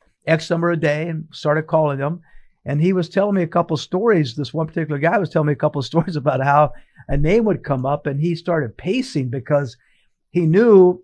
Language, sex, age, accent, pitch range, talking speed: English, male, 50-69, American, 150-185 Hz, 230 wpm